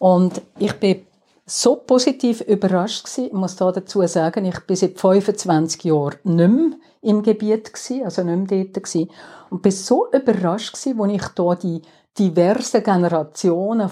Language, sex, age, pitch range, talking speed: German, female, 50-69, 175-215 Hz, 165 wpm